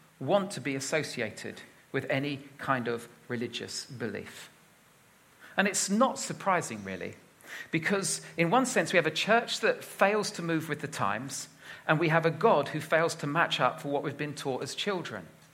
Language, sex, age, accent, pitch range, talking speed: English, male, 40-59, British, 145-190 Hz, 180 wpm